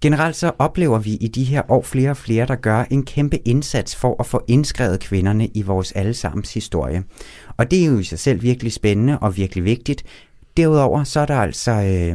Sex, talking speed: male, 210 wpm